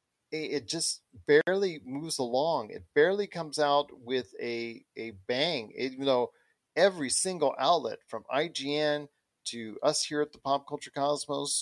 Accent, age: American, 40-59